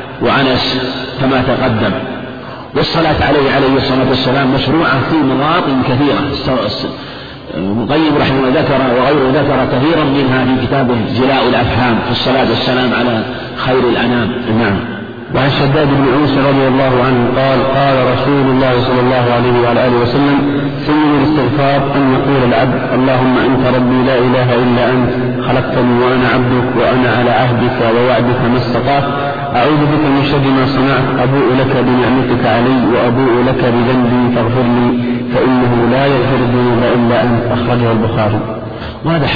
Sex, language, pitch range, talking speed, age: male, Arabic, 120-130 Hz, 140 wpm, 50-69